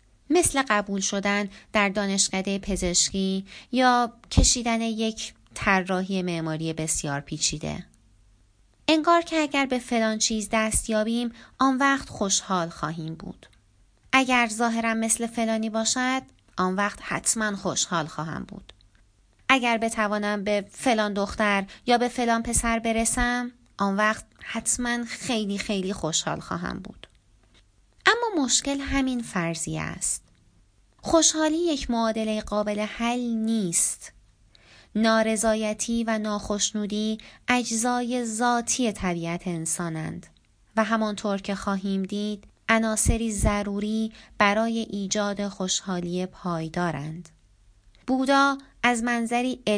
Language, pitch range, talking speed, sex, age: Persian, 180-235 Hz, 100 wpm, female, 30-49